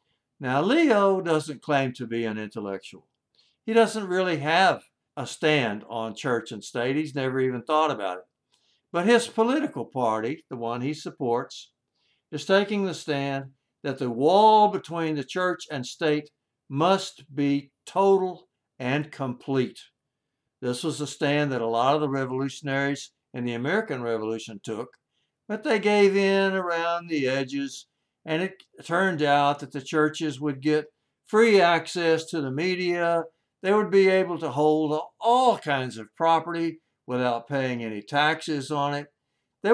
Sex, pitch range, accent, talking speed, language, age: male, 130-175 Hz, American, 155 wpm, English, 60-79